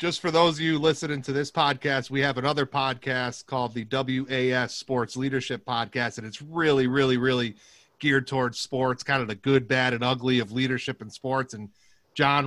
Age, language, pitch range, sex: 30-49, English, 125-150 Hz, male